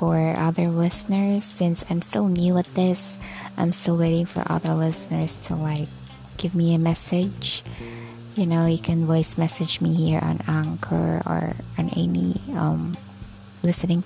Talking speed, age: 155 wpm, 20-39